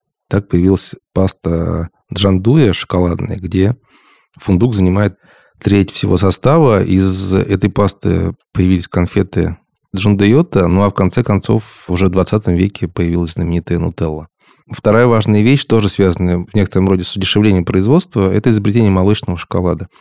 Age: 20-39